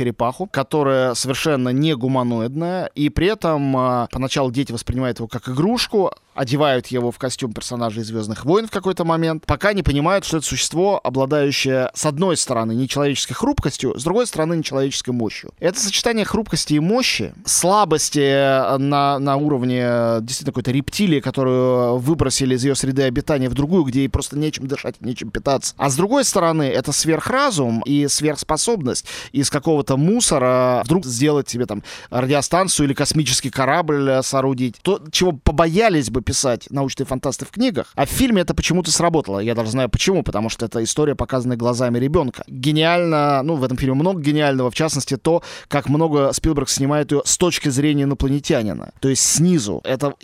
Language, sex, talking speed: Russian, male, 160 wpm